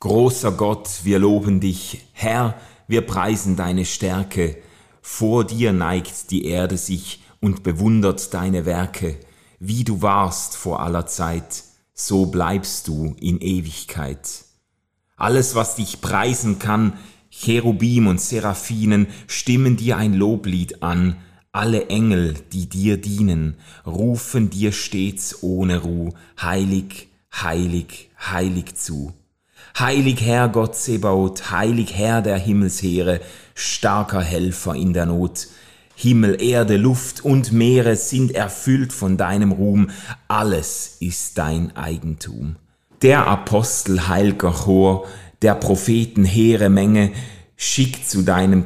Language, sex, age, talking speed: German, male, 30-49, 120 wpm